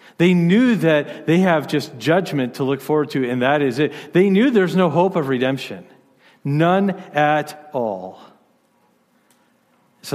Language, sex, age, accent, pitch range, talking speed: English, male, 40-59, American, 120-150 Hz, 155 wpm